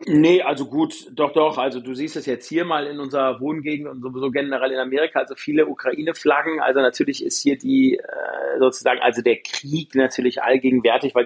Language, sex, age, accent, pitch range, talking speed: German, male, 40-59, German, 125-155 Hz, 190 wpm